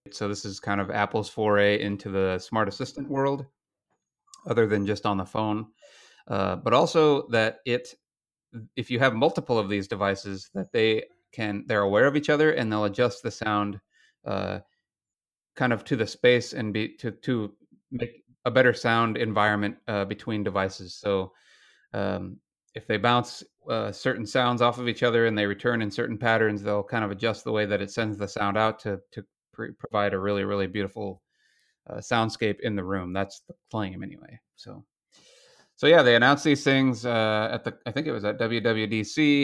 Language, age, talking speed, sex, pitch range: English, 30-49, 185 wpm, male, 100-120 Hz